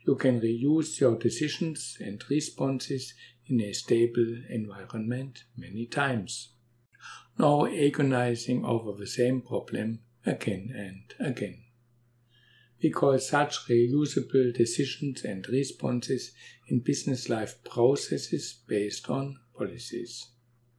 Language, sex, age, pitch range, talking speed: English, male, 60-79, 120-135 Hz, 105 wpm